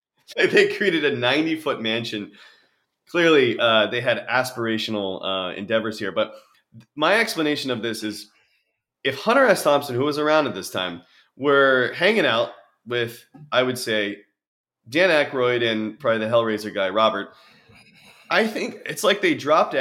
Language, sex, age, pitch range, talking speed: English, male, 30-49, 110-150 Hz, 150 wpm